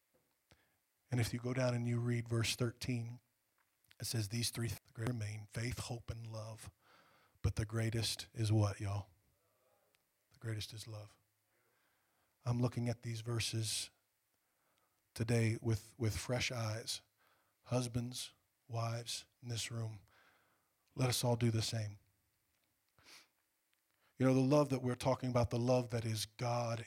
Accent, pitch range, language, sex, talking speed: American, 110-120 Hz, English, male, 145 wpm